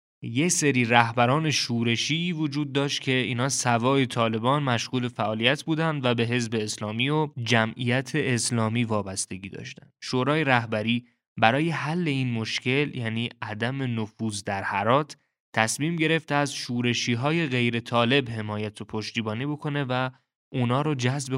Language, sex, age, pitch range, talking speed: English, male, 20-39, 110-130 Hz, 135 wpm